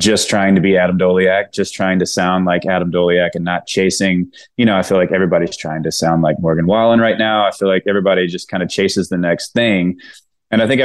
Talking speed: 245 wpm